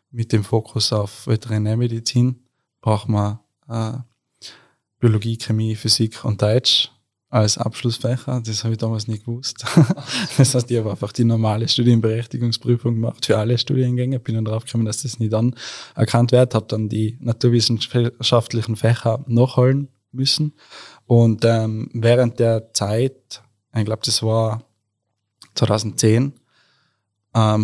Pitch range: 110-120 Hz